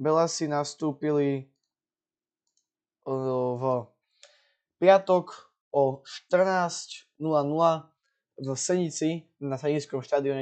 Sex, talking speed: male, 70 wpm